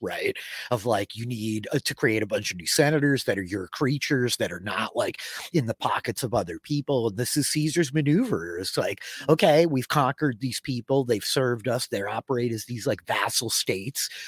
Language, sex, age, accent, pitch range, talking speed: English, male, 30-49, American, 110-145 Hz, 200 wpm